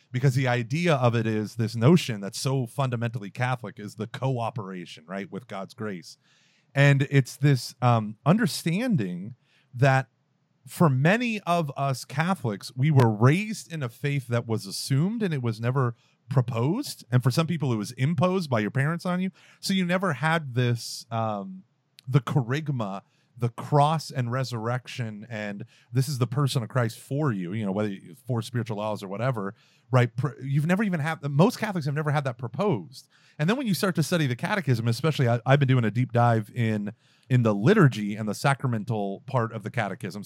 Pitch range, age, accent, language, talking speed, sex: 115-155 Hz, 30-49, American, English, 185 wpm, male